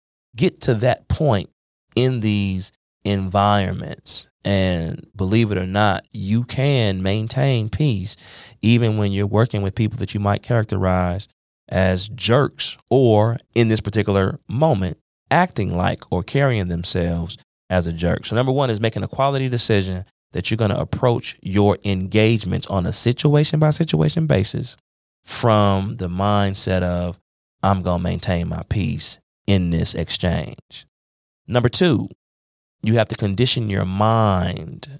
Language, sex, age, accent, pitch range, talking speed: English, male, 30-49, American, 95-120 Hz, 140 wpm